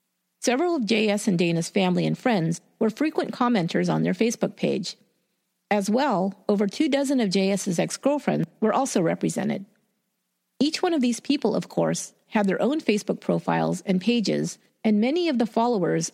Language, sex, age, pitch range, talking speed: English, female, 40-59, 195-245 Hz, 165 wpm